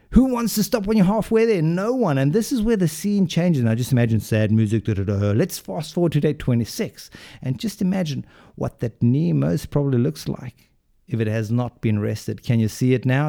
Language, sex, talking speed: English, male, 235 wpm